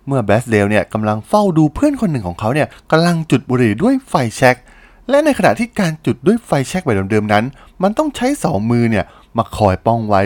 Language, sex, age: Thai, male, 20-39